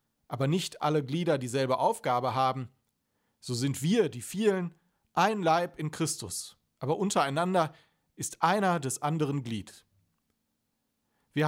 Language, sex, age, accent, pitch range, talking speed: German, male, 40-59, German, 135-185 Hz, 125 wpm